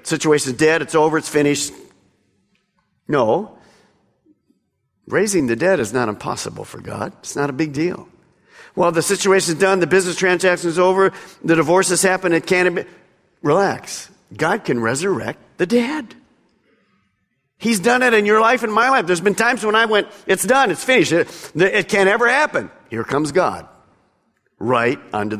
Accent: American